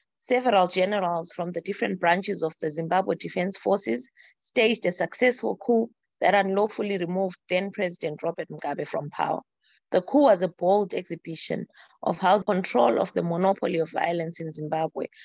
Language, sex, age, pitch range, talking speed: English, female, 20-39, 170-210 Hz, 155 wpm